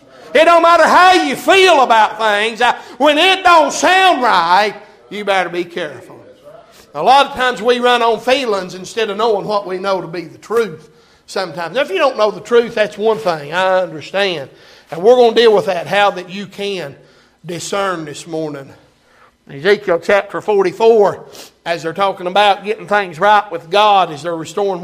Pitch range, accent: 185-230 Hz, American